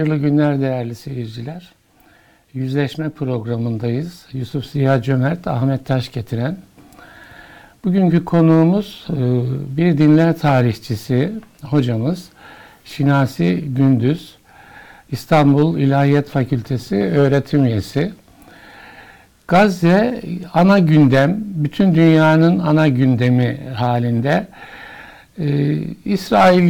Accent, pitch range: native, 135-165 Hz